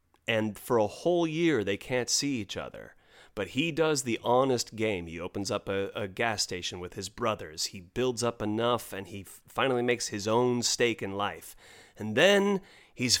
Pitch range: 100-145 Hz